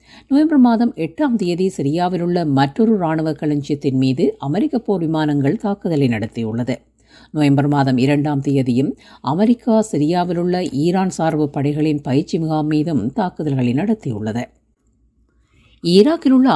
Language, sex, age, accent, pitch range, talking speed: Tamil, female, 50-69, native, 145-190 Hz, 110 wpm